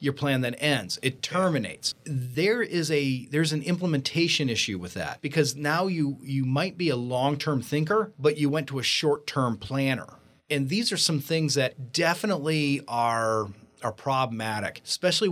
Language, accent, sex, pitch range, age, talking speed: English, American, male, 120-155 Hz, 40-59, 170 wpm